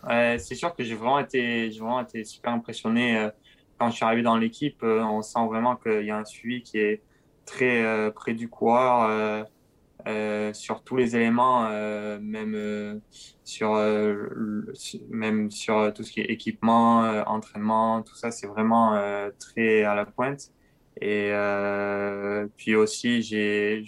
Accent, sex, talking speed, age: French, male, 180 wpm, 20-39